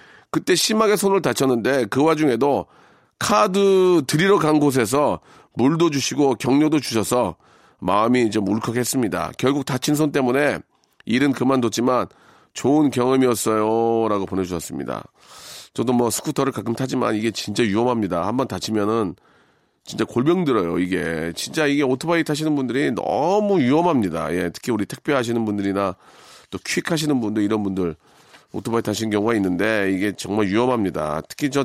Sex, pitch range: male, 105-140 Hz